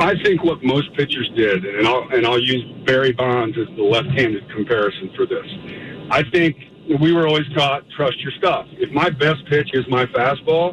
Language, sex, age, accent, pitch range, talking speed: English, male, 50-69, American, 145-175 Hz, 190 wpm